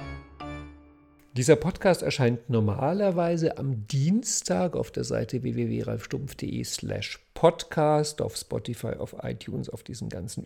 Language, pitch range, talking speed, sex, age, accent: German, 115-155 Hz, 110 wpm, male, 50-69, German